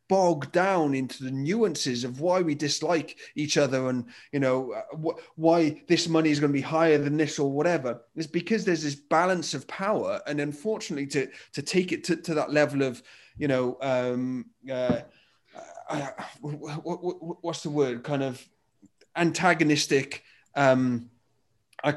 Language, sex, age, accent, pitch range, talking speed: English, male, 30-49, British, 135-170 Hz, 165 wpm